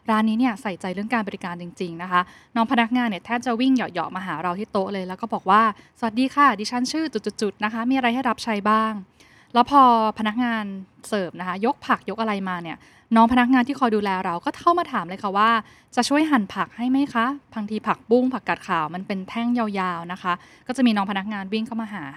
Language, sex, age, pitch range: Thai, female, 10-29, 190-245 Hz